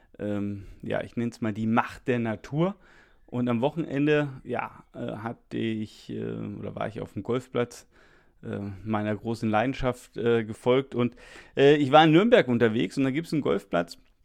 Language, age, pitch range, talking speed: German, 30-49, 105-125 Hz, 175 wpm